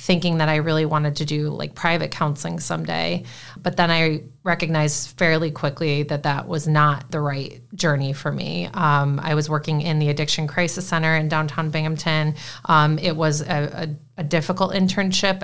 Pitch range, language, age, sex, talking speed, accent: 145-170 Hz, English, 30-49, female, 180 wpm, American